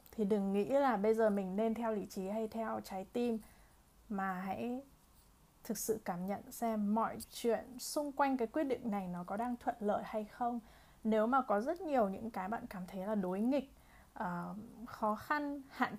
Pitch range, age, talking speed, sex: 200-240 Hz, 20-39, 200 wpm, female